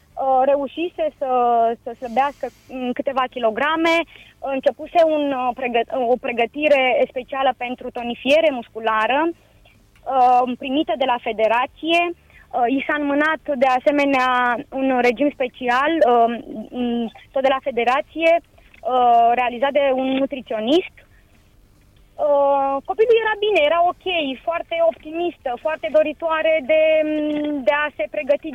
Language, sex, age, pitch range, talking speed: Romanian, female, 20-39, 250-300 Hz, 100 wpm